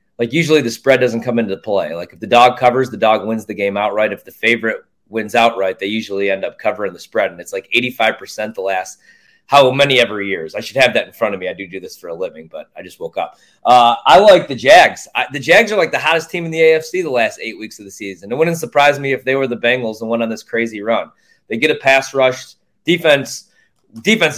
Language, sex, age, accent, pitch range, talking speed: English, male, 20-39, American, 115-155 Hz, 260 wpm